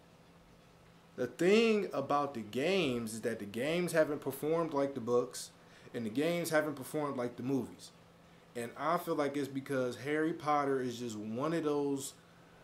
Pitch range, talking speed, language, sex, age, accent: 125-160 Hz, 165 wpm, English, male, 20-39, American